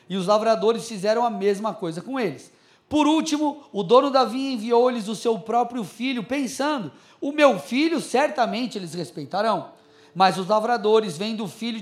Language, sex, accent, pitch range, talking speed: Portuguese, male, Brazilian, 210-270 Hz, 170 wpm